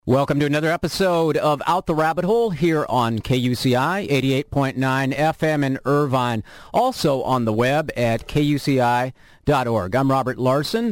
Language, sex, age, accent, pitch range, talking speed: English, male, 40-59, American, 120-155 Hz, 135 wpm